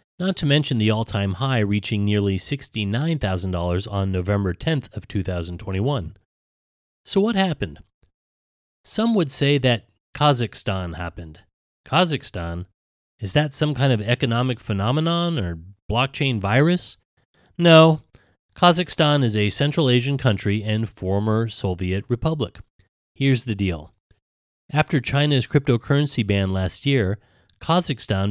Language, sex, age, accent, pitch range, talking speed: English, male, 30-49, American, 100-135 Hz, 115 wpm